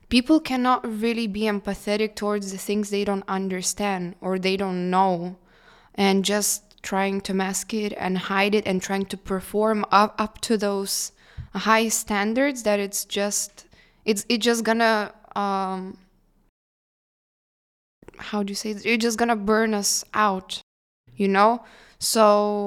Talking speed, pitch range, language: 145 wpm, 195-220 Hz, English